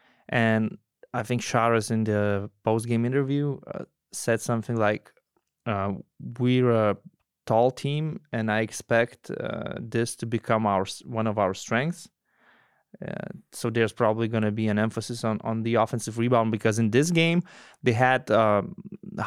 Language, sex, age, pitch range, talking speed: English, male, 20-39, 105-125 Hz, 160 wpm